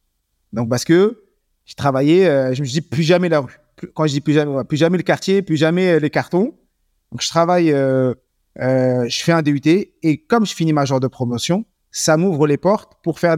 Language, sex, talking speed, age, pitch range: French, male, 240 wpm, 30-49, 140-180 Hz